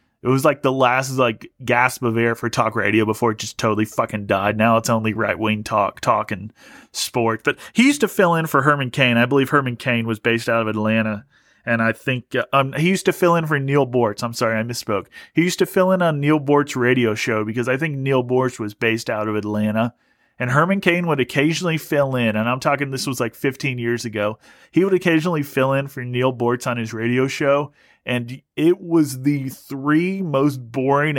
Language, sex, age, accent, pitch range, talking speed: English, male, 30-49, American, 115-145 Hz, 220 wpm